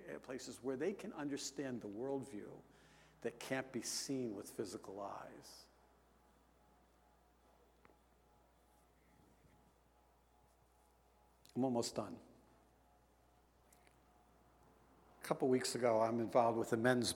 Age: 70-89